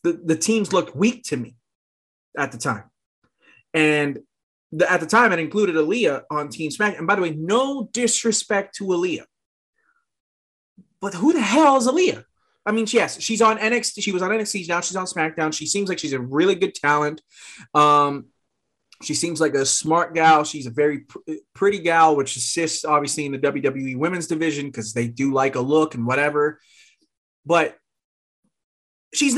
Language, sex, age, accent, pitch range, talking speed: English, male, 20-39, American, 150-225 Hz, 180 wpm